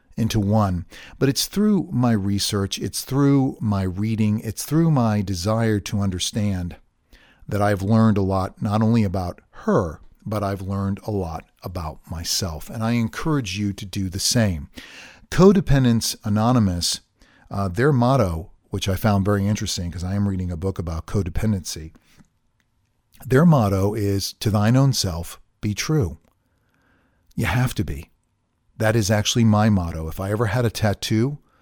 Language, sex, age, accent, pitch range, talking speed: English, male, 50-69, American, 95-115 Hz, 160 wpm